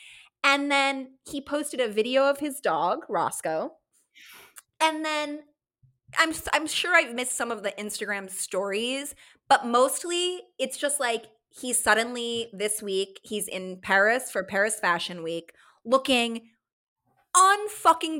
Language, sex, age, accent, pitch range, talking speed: English, female, 20-39, American, 210-300 Hz, 130 wpm